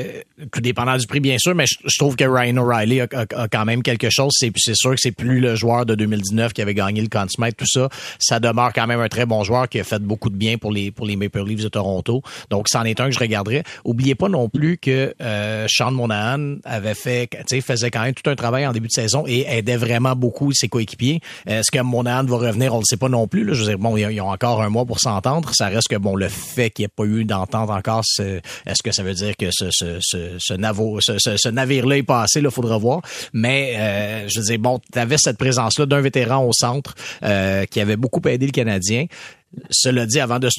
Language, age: French, 40-59